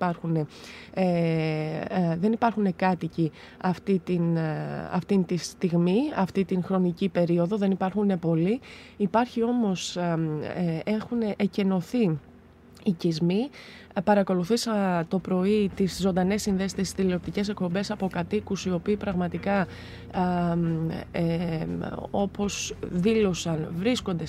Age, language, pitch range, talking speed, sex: 20-39, Greek, 175-225 Hz, 85 wpm, female